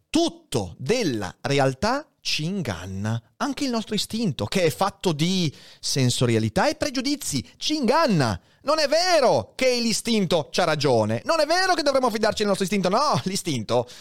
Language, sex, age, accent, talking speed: Italian, male, 30-49, native, 155 wpm